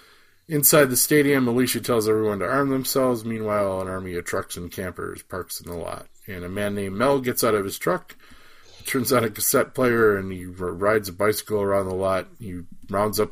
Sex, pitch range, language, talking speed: male, 95-110 Hz, English, 205 wpm